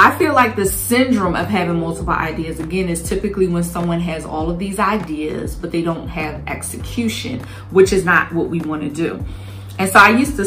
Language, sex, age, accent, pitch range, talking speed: English, female, 20-39, American, 160-195 Hz, 210 wpm